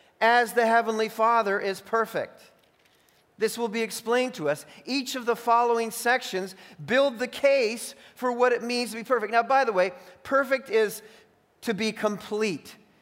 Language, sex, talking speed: English, male, 165 wpm